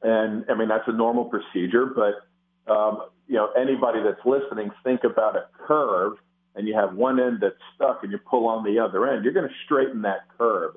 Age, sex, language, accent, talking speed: 50-69, male, English, American, 210 wpm